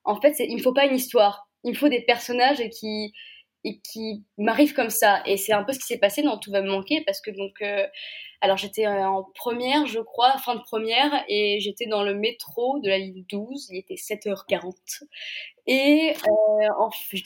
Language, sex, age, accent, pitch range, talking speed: French, female, 20-39, French, 205-290 Hz, 220 wpm